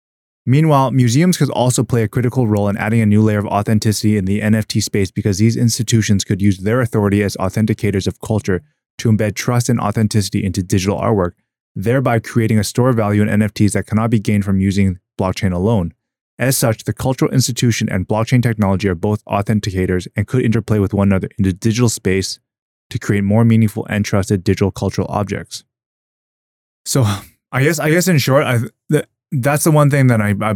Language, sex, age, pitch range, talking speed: English, male, 20-39, 100-120 Hz, 200 wpm